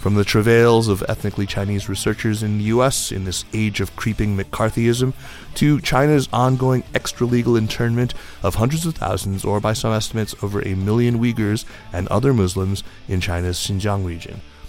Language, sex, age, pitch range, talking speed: English, male, 30-49, 100-125 Hz, 165 wpm